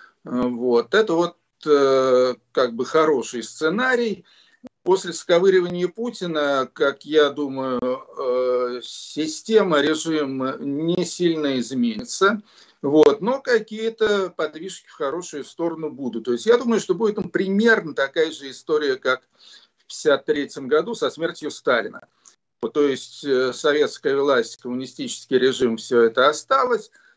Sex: male